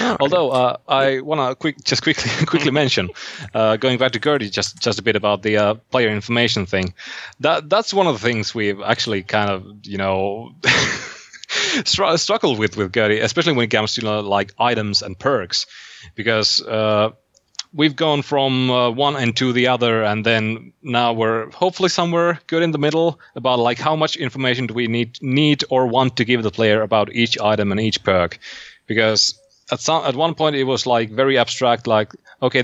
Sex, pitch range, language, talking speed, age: male, 110-145 Hz, English, 195 wpm, 30-49